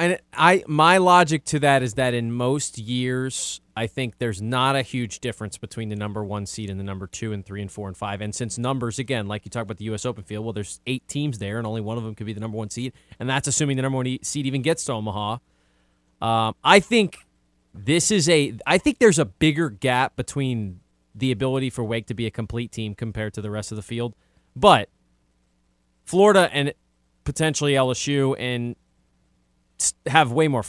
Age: 20-39